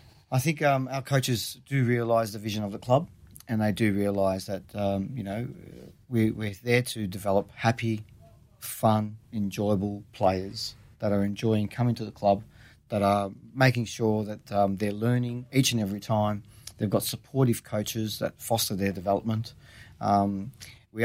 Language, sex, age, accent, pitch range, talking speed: English, male, 40-59, Australian, 100-120 Hz, 165 wpm